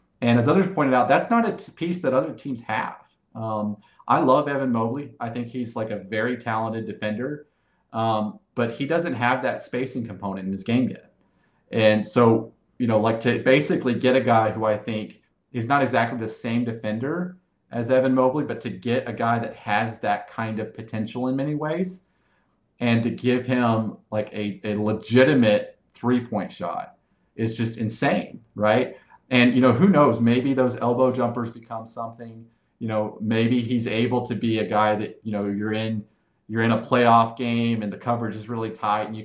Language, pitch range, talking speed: English, 110-125 Hz, 195 wpm